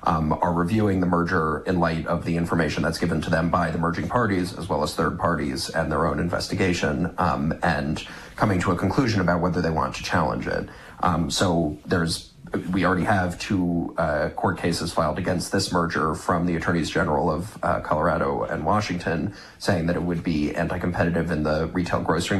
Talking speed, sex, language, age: 195 wpm, male, English, 30-49